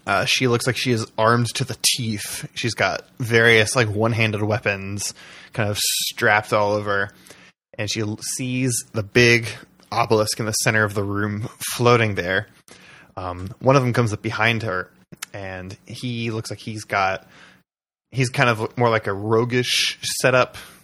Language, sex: English, male